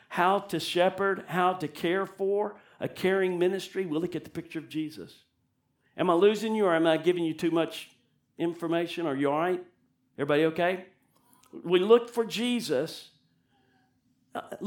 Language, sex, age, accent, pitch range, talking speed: English, male, 50-69, American, 130-180 Hz, 165 wpm